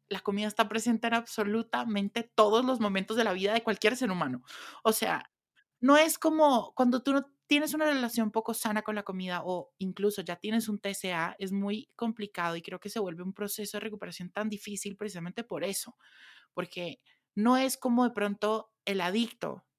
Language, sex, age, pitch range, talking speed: Spanish, male, 30-49, 190-235 Hz, 190 wpm